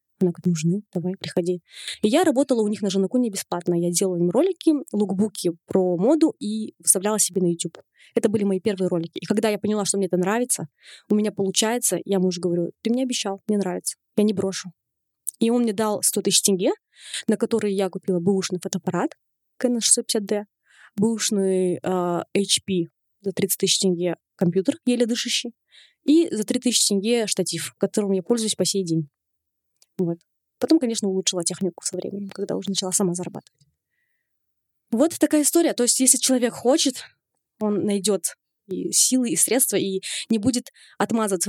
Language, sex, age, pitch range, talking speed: Russian, female, 20-39, 185-240 Hz, 170 wpm